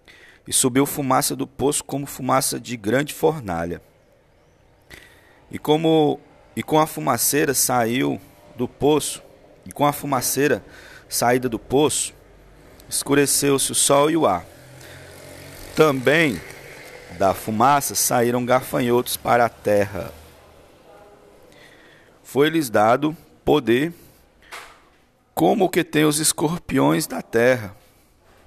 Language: Portuguese